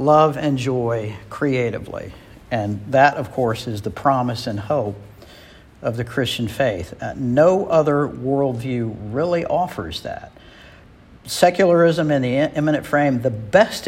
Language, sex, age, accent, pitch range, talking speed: English, male, 60-79, American, 115-145 Hz, 135 wpm